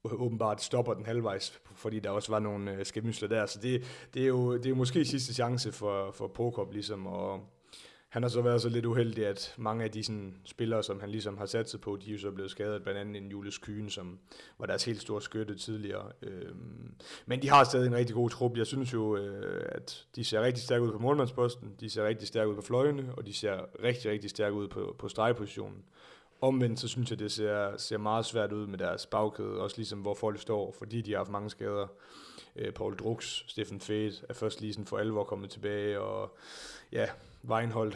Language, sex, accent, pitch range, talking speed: Danish, male, native, 105-115 Hz, 220 wpm